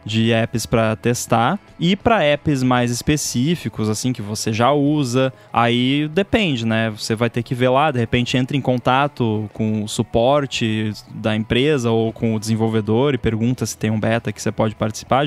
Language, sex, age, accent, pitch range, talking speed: Portuguese, male, 10-29, Brazilian, 115-145 Hz, 185 wpm